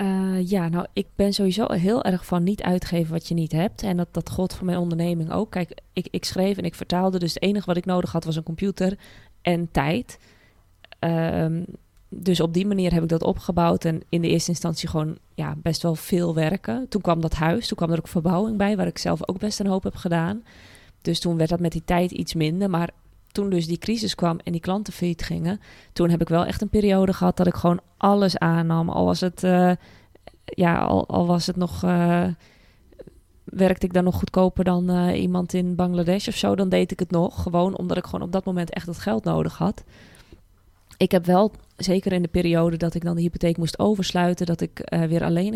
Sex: female